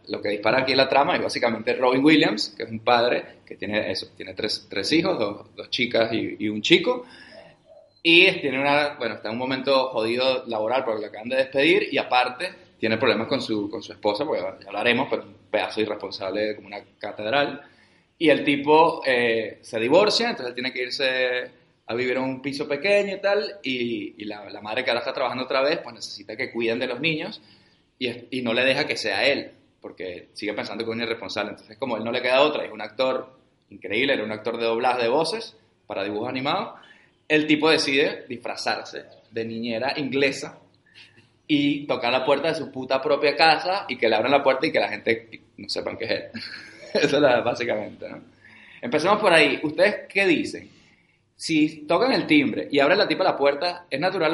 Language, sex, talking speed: Spanish, male, 215 wpm